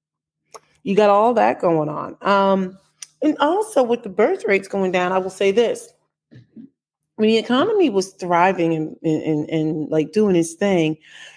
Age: 30-49